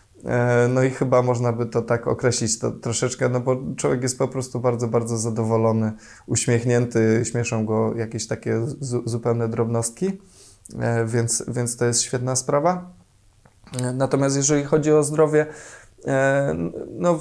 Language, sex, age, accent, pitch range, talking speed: Polish, male, 20-39, native, 120-140 Hz, 130 wpm